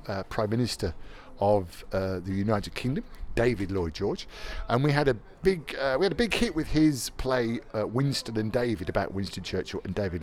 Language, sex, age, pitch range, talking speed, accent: English, male, 50-69, 95-140 Hz, 200 wpm, British